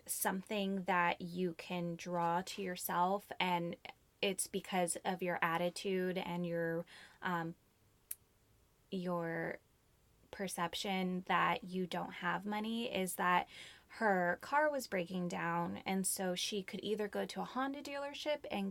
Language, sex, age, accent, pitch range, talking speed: English, female, 20-39, American, 180-215 Hz, 130 wpm